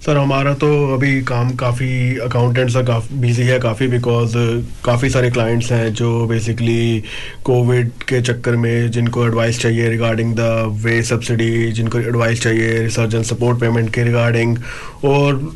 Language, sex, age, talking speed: Hindi, male, 30-49, 150 wpm